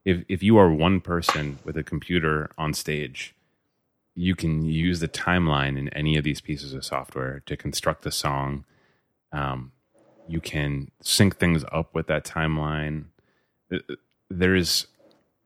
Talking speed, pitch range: 145 wpm, 75-90 Hz